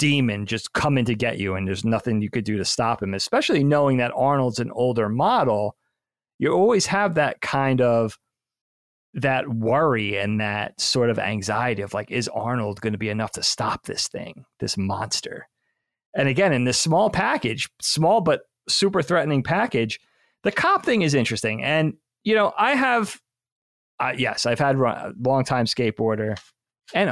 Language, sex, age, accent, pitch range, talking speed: English, male, 30-49, American, 110-135 Hz, 175 wpm